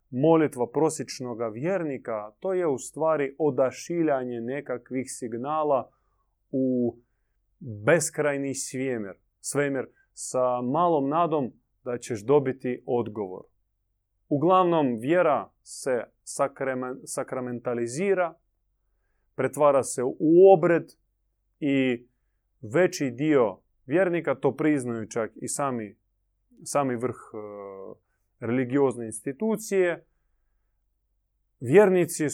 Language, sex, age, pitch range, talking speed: Croatian, male, 30-49, 105-145 Hz, 80 wpm